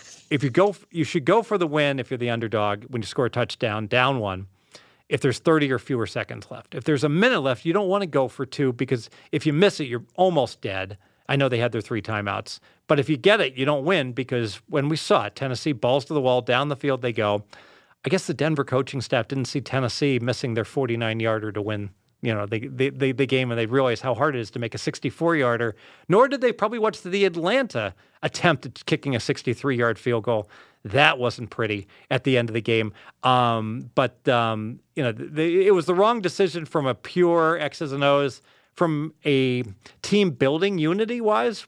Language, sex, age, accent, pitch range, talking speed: English, male, 40-59, American, 120-155 Hz, 225 wpm